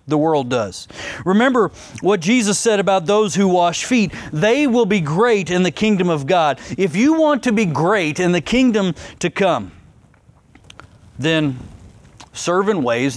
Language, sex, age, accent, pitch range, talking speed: English, male, 40-59, American, 165-240 Hz, 165 wpm